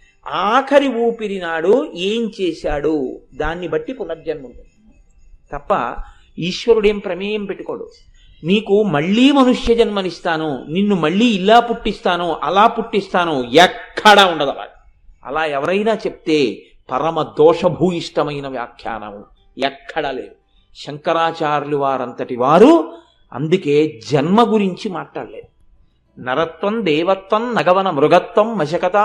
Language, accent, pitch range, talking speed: Telugu, native, 165-235 Hz, 95 wpm